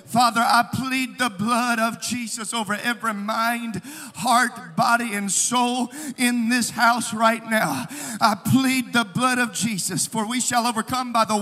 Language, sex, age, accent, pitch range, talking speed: English, male, 40-59, American, 235-295 Hz, 165 wpm